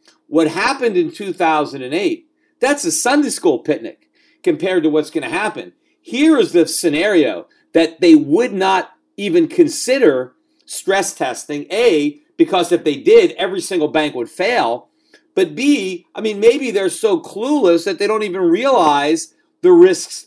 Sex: male